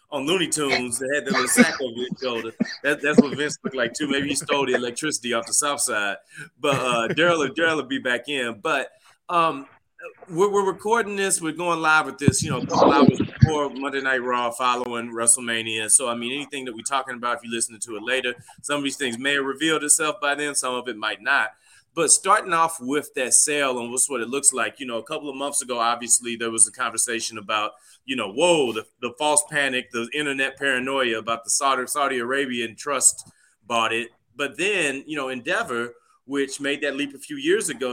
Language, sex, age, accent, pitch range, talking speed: English, male, 20-39, American, 120-155 Hz, 225 wpm